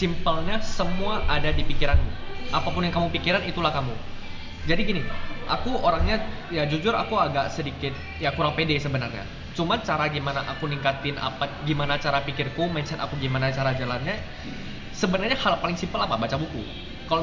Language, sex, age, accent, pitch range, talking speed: Indonesian, male, 10-29, native, 130-175 Hz, 160 wpm